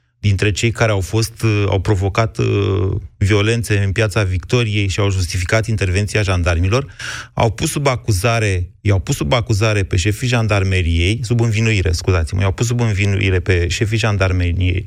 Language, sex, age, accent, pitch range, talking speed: Romanian, male, 30-49, native, 100-135 Hz, 150 wpm